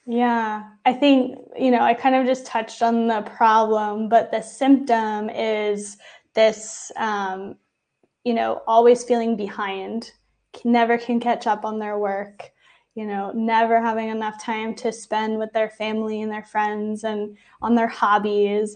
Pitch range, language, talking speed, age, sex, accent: 210-230 Hz, English, 160 wpm, 10-29, female, American